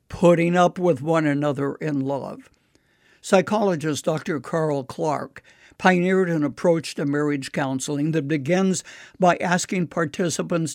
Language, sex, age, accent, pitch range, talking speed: English, male, 60-79, American, 150-180 Hz, 125 wpm